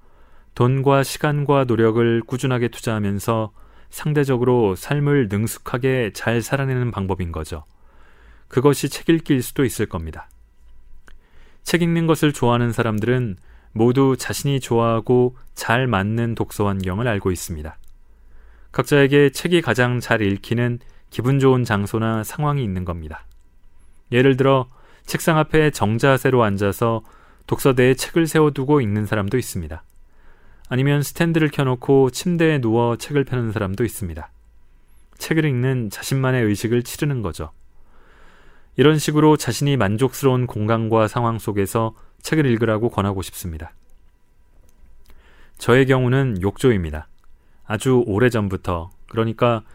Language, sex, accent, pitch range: Korean, male, native, 95-130 Hz